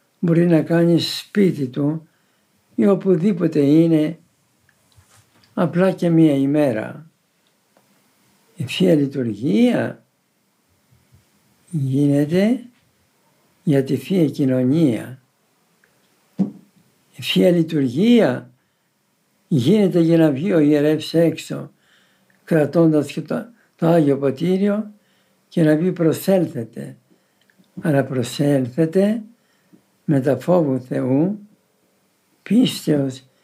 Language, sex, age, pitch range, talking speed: Greek, male, 60-79, 140-185 Hz, 75 wpm